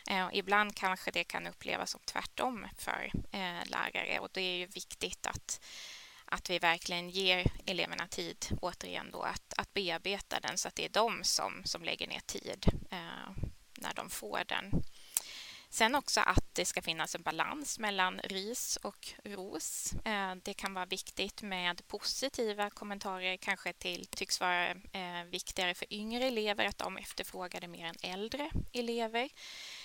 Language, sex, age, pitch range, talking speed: Swedish, female, 20-39, 185-215 Hz, 145 wpm